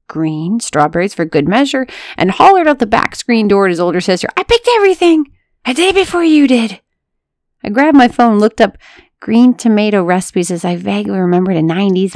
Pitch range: 170-230 Hz